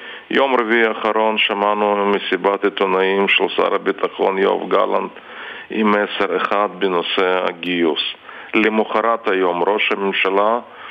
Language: Hebrew